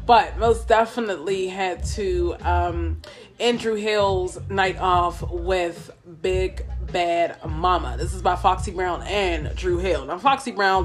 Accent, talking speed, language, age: American, 145 wpm, English, 20-39